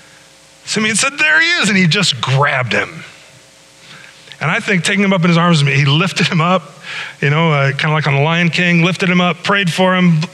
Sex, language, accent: male, English, American